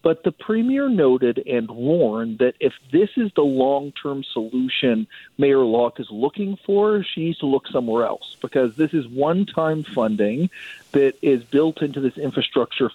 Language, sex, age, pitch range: English, male, 40-59, 125-155 Hz